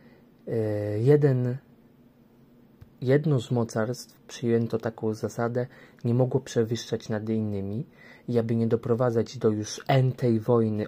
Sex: male